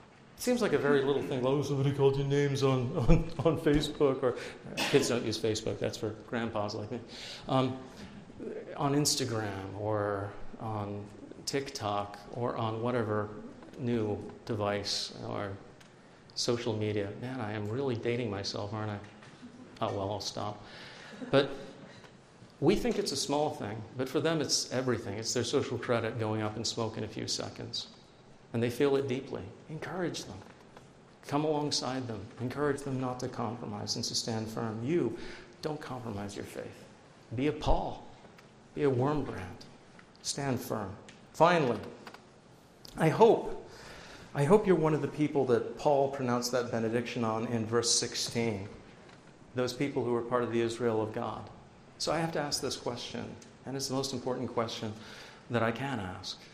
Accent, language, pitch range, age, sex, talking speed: American, English, 110-140 Hz, 40-59, male, 165 wpm